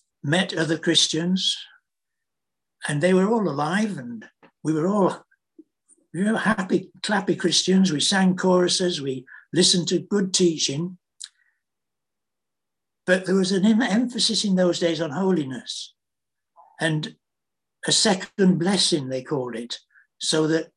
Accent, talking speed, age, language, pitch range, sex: British, 120 wpm, 60-79, English, 160-190 Hz, male